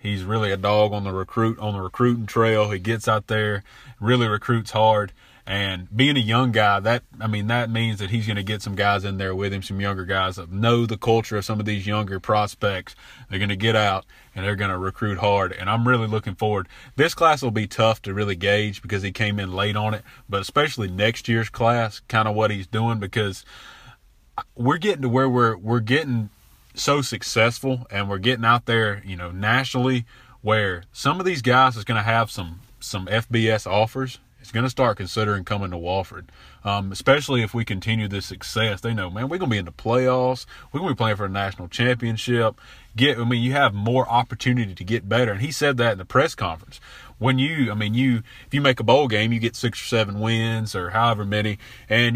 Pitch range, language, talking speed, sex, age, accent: 100-120 Hz, English, 225 wpm, male, 30-49, American